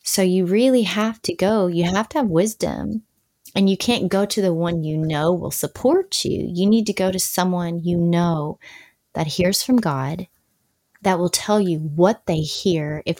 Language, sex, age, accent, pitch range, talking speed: English, female, 20-39, American, 170-210 Hz, 195 wpm